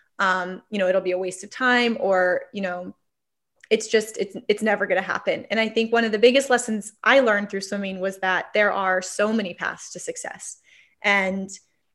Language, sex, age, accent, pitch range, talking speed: English, female, 10-29, American, 200-245 Hz, 210 wpm